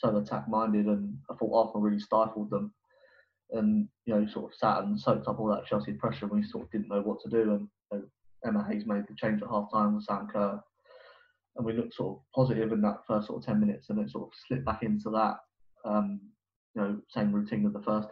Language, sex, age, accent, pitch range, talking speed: English, male, 20-39, British, 105-120 Hz, 250 wpm